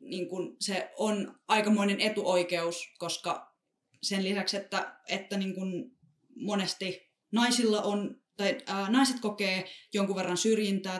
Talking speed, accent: 120 wpm, native